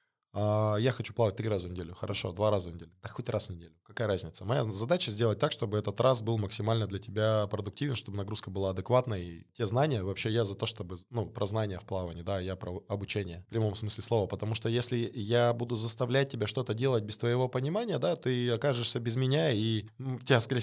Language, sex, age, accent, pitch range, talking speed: Russian, male, 20-39, native, 95-120 Hz, 220 wpm